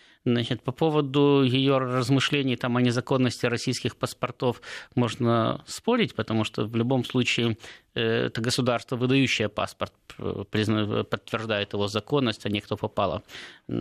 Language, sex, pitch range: Russian, male, 120-145 Hz